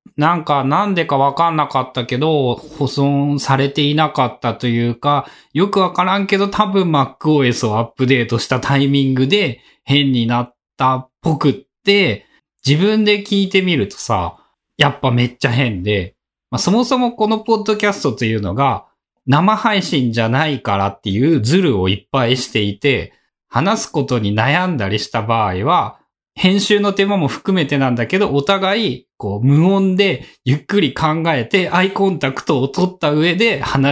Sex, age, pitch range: male, 20-39, 125-195 Hz